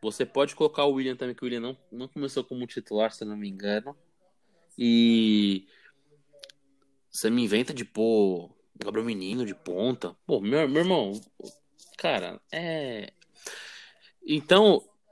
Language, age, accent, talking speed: Portuguese, 20-39, Brazilian, 145 wpm